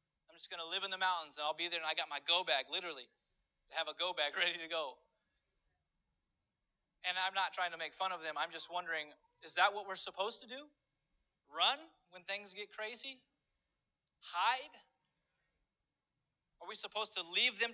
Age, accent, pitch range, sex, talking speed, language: 30-49, American, 165-210 Hz, male, 195 wpm, English